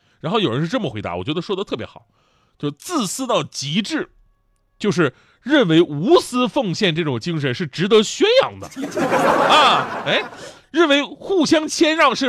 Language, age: Chinese, 30-49